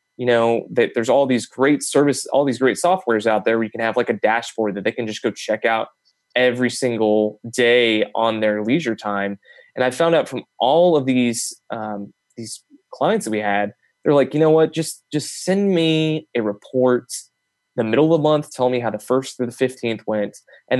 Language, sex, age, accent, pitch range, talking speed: English, male, 20-39, American, 110-145 Hz, 215 wpm